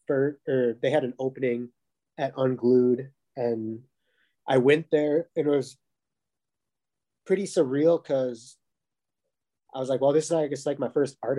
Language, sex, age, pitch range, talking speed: English, male, 20-39, 115-135 Hz, 140 wpm